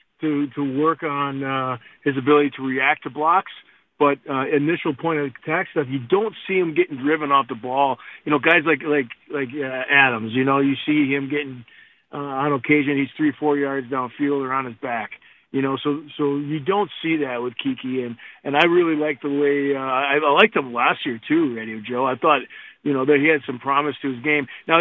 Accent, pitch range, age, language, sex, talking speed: American, 135-160 Hz, 40-59, English, male, 225 wpm